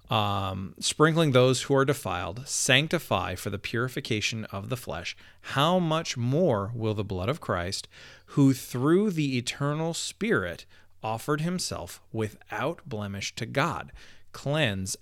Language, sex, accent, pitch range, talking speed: English, male, American, 105-140 Hz, 130 wpm